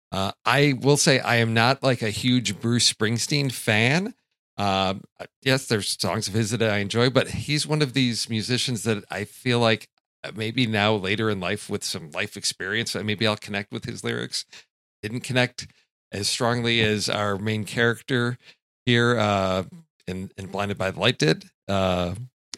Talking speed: 175 wpm